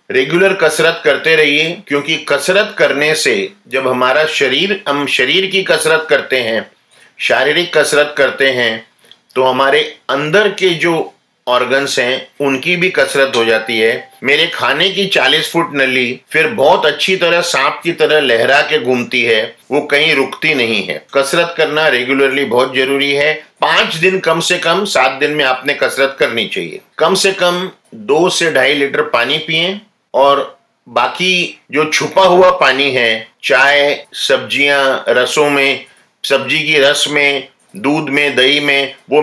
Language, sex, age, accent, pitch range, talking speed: Hindi, male, 50-69, native, 135-170 Hz, 160 wpm